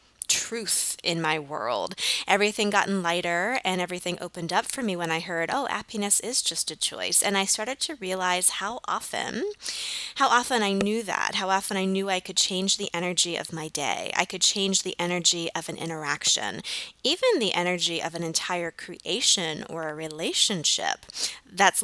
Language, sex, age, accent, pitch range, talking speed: English, female, 20-39, American, 175-225 Hz, 180 wpm